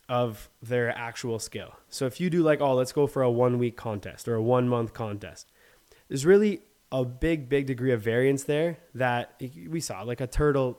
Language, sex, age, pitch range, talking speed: English, male, 20-39, 115-140 Hz, 205 wpm